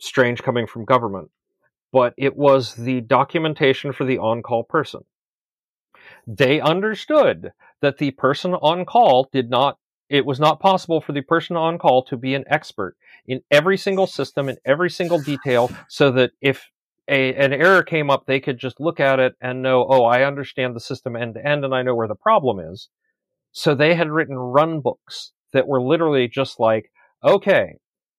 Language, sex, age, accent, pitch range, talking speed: English, male, 40-59, American, 130-165 Hz, 180 wpm